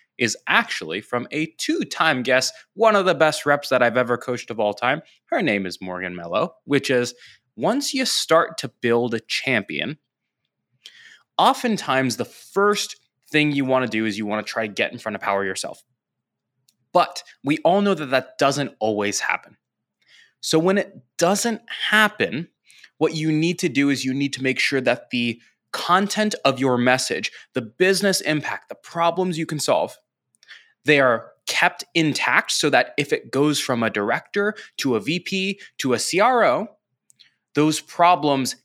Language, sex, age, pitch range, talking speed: English, male, 20-39, 120-170 Hz, 170 wpm